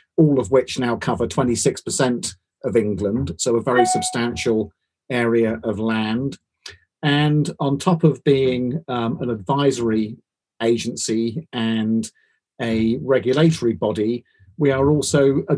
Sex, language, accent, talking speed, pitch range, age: male, English, British, 125 wpm, 115-135 Hz, 40-59